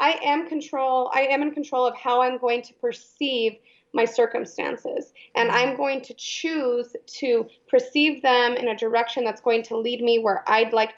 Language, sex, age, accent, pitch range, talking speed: English, female, 30-49, American, 245-295 Hz, 185 wpm